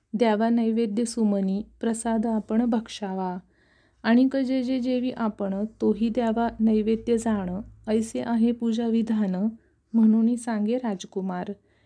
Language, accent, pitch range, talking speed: Marathi, native, 215-245 Hz, 115 wpm